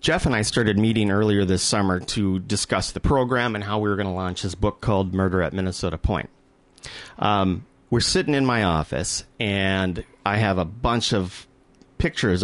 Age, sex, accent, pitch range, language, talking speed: 30-49, male, American, 95-125 Hz, English, 190 wpm